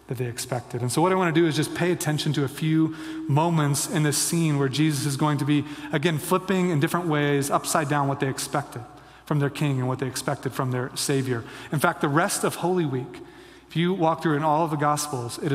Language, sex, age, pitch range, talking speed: English, male, 30-49, 135-160 Hz, 245 wpm